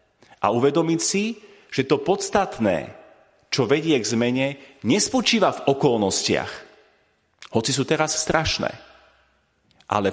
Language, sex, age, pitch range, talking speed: Slovak, male, 40-59, 120-160 Hz, 105 wpm